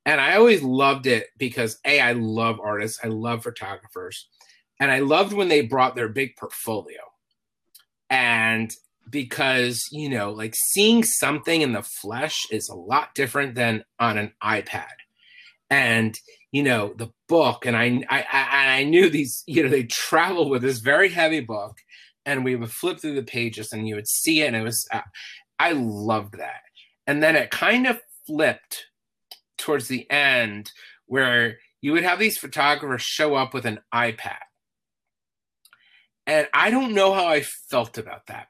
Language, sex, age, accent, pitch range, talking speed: English, male, 30-49, American, 115-145 Hz, 170 wpm